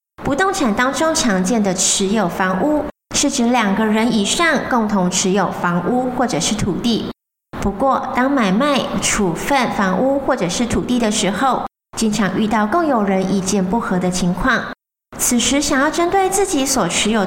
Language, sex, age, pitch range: Chinese, female, 30-49, 195-260 Hz